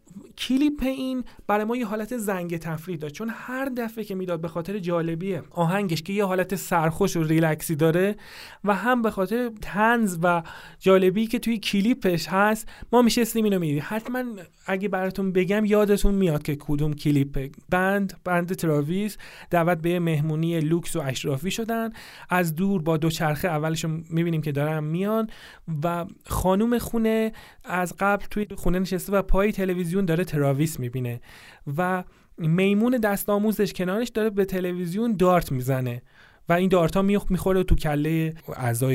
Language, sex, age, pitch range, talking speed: Persian, male, 30-49, 160-210 Hz, 155 wpm